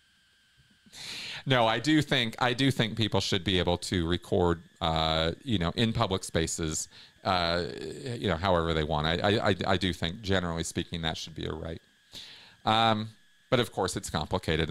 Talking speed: 175 wpm